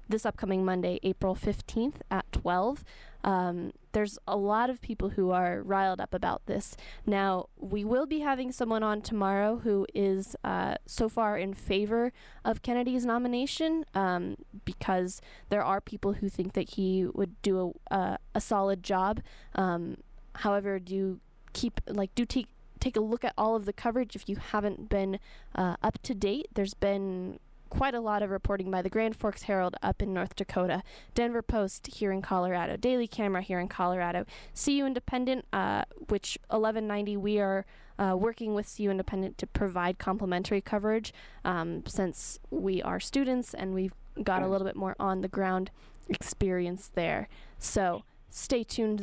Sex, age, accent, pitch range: female, 10-29, American, 190-230 Hz